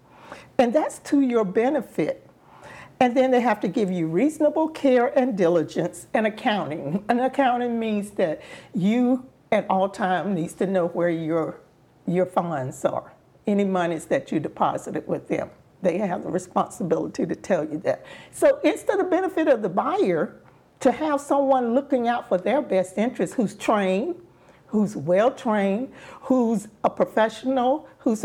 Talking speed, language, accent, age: 155 wpm, English, American, 50-69